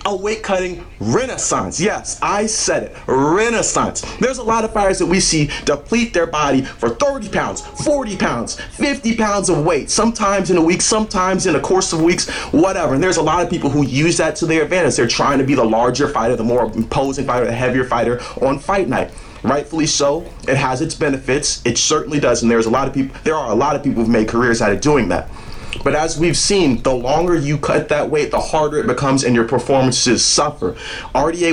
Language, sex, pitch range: English, male, 120-170 Hz